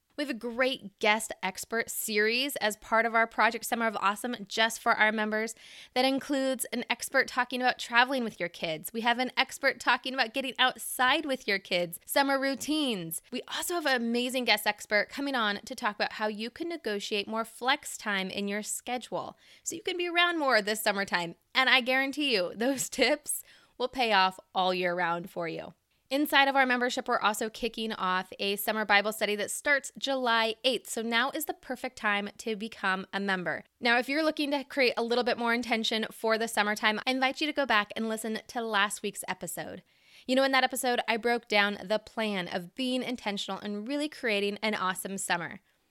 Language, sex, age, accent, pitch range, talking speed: English, female, 20-39, American, 210-260 Hz, 205 wpm